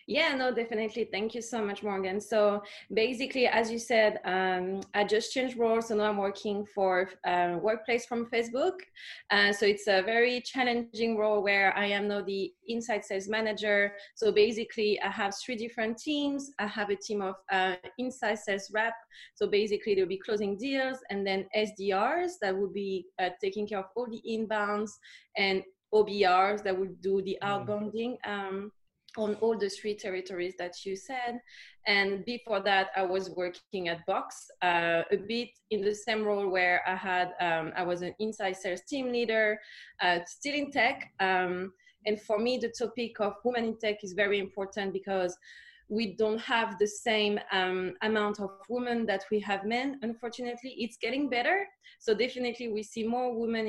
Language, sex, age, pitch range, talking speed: English, female, 20-39, 195-235 Hz, 180 wpm